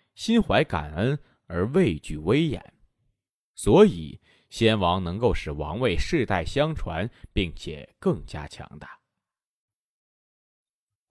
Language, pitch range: Chinese, 85-120 Hz